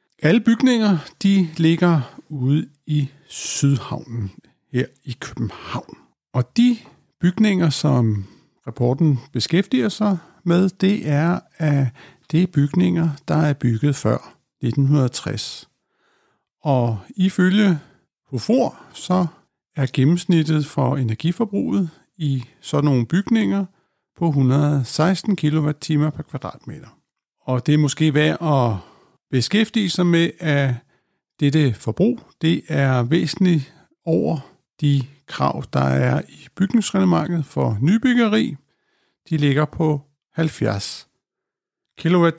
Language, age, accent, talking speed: Danish, 60-79, native, 105 wpm